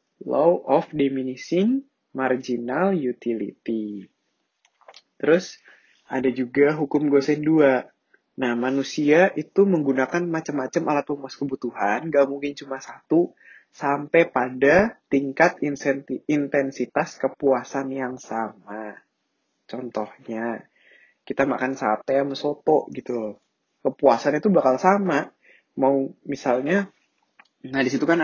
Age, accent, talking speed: 20-39, Indonesian, 105 wpm